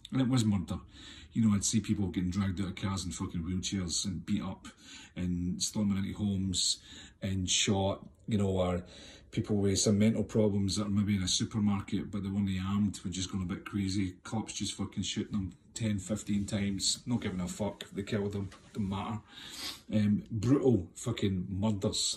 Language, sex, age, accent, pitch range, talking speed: English, male, 40-59, British, 100-110 Hz, 205 wpm